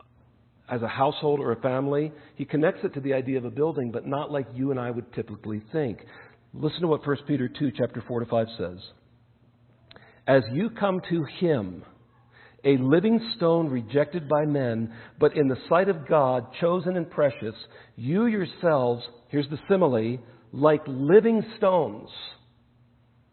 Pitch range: 120-145 Hz